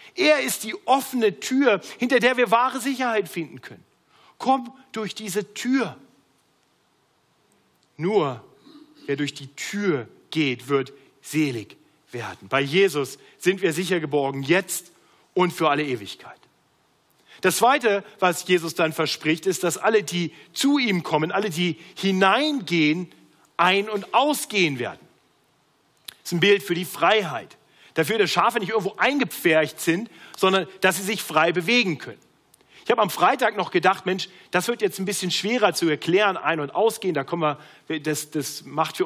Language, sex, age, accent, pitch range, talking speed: German, male, 40-59, German, 160-225 Hz, 155 wpm